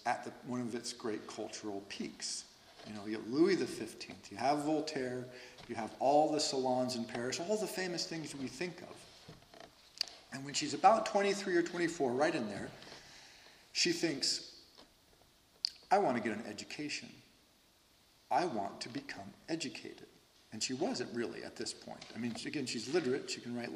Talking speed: 170 wpm